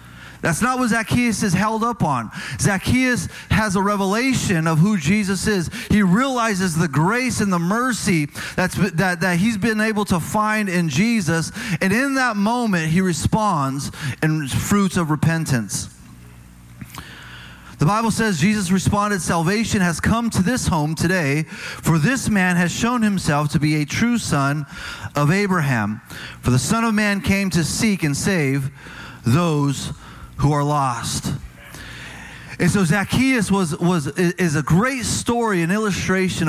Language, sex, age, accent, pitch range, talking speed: English, male, 30-49, American, 155-210 Hz, 155 wpm